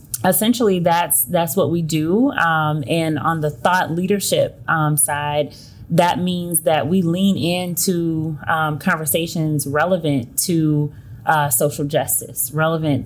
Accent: American